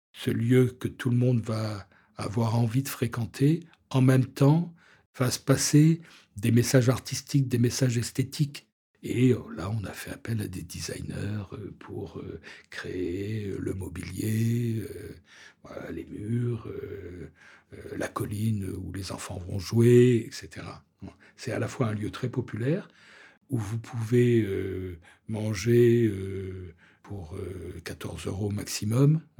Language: French